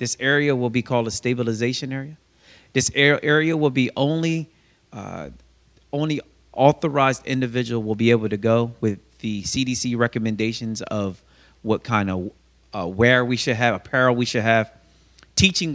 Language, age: English, 30-49